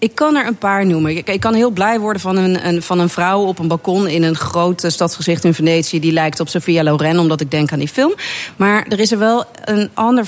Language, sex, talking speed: Dutch, female, 245 wpm